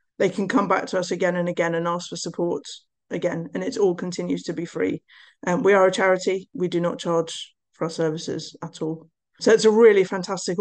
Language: English